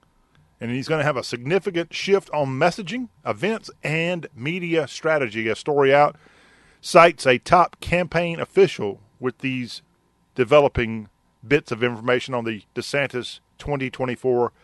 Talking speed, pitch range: 130 wpm, 120-165 Hz